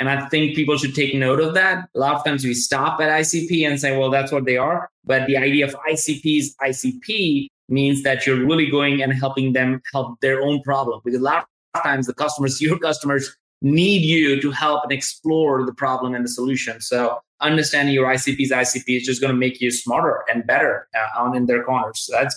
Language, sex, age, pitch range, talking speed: English, male, 20-39, 135-155 Hz, 225 wpm